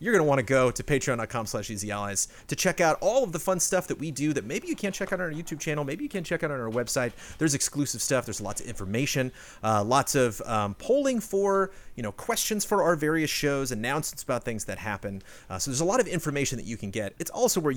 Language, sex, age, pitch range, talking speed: English, male, 30-49, 100-155 Hz, 260 wpm